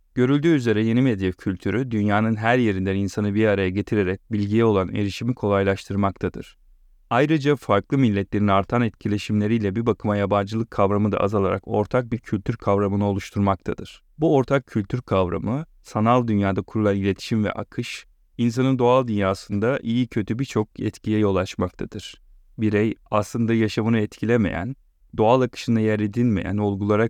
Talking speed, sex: 135 wpm, male